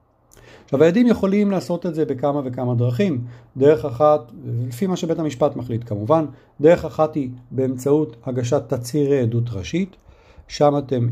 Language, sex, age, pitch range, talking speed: Hebrew, male, 50-69, 120-160 Hz, 145 wpm